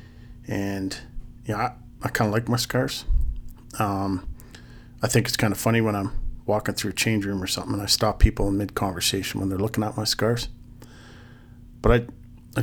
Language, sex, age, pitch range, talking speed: English, male, 40-59, 100-120 Hz, 190 wpm